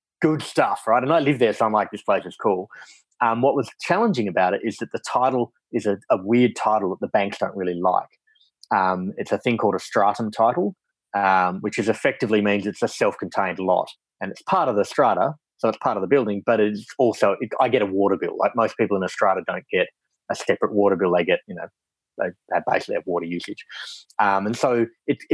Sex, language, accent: male, English, Australian